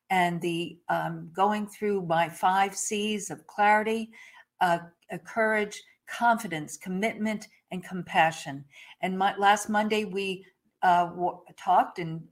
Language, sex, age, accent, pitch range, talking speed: English, female, 50-69, American, 180-210 Hz, 110 wpm